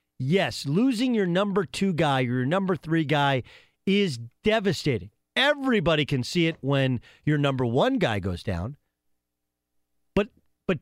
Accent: American